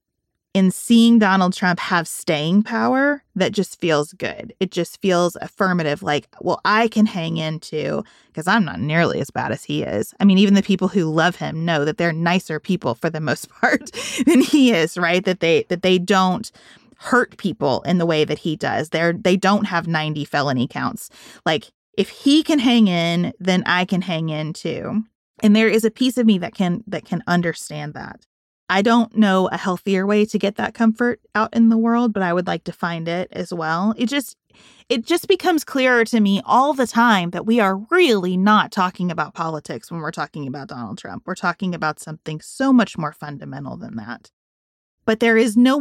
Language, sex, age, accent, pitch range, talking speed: English, female, 30-49, American, 170-225 Hz, 210 wpm